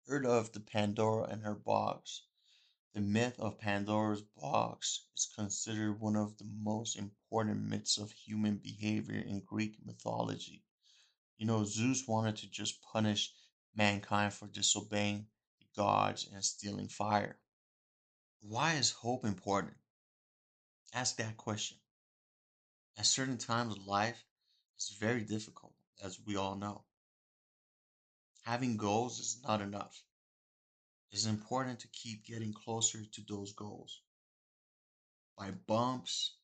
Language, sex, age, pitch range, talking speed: English, male, 30-49, 100-110 Hz, 125 wpm